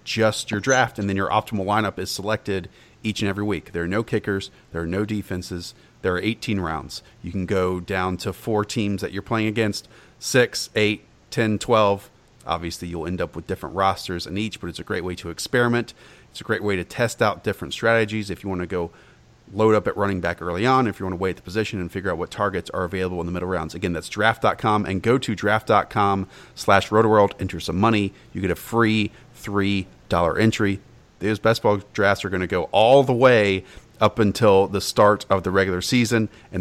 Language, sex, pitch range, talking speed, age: English, male, 90-110 Hz, 220 wpm, 30-49